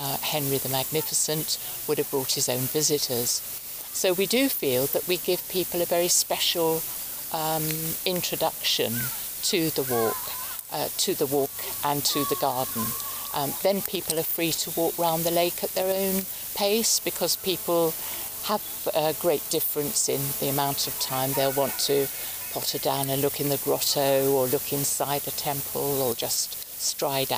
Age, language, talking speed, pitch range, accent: 50-69, English, 170 wpm, 140-175 Hz, British